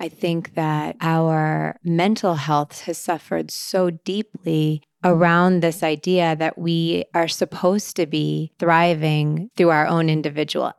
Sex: female